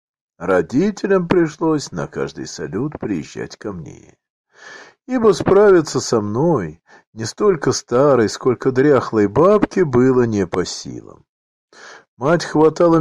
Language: Russian